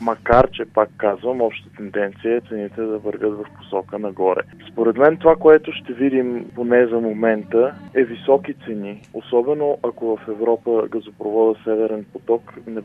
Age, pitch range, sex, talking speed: 20-39, 105-125 Hz, male, 155 wpm